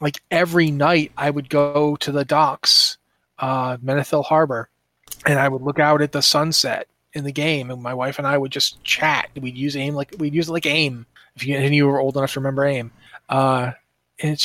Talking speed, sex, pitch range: 220 wpm, male, 135-155 Hz